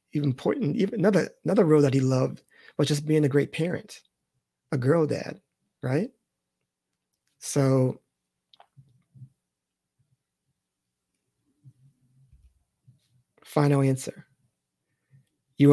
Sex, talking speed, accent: male, 85 wpm, American